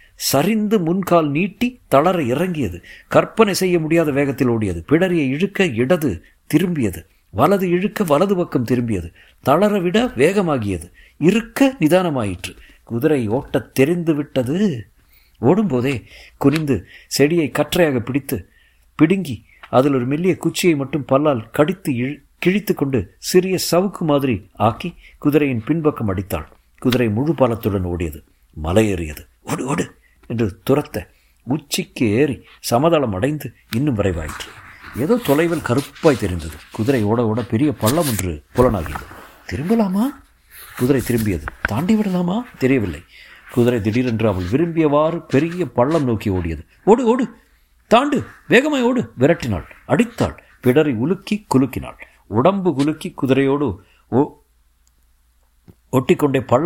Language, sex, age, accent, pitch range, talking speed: Tamil, male, 50-69, native, 110-170 Hz, 105 wpm